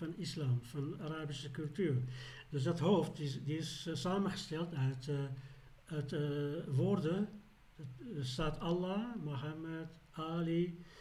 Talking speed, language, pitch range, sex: 140 wpm, Dutch, 135-170 Hz, male